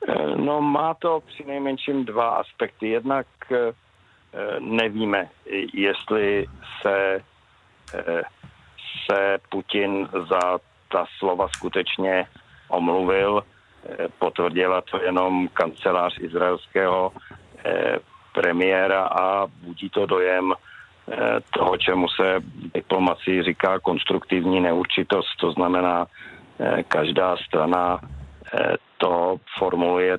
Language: Czech